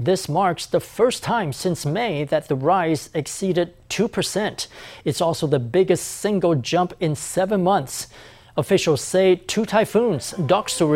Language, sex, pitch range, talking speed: English, male, 150-190 Hz, 150 wpm